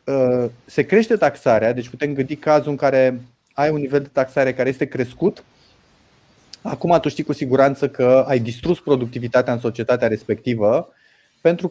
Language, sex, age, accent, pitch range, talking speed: Romanian, male, 30-49, native, 120-155 Hz, 155 wpm